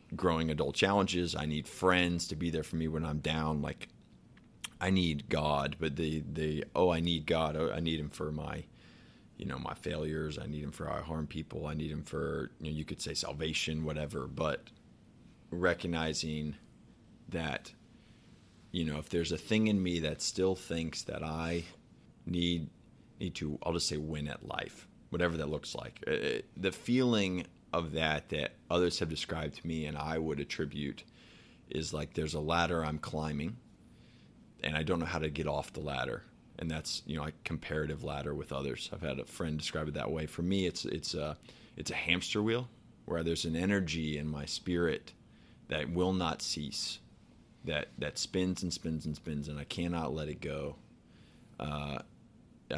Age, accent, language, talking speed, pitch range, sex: 30-49, American, English, 185 wpm, 75-85 Hz, male